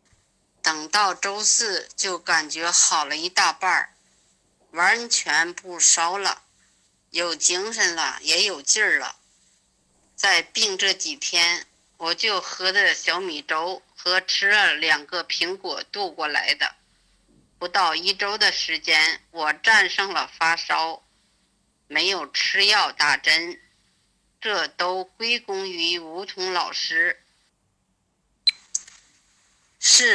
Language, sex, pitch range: Chinese, female, 170-255 Hz